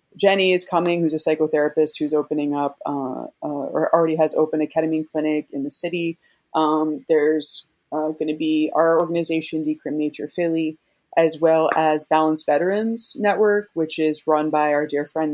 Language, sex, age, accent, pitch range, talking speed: English, female, 20-39, American, 150-170 Hz, 175 wpm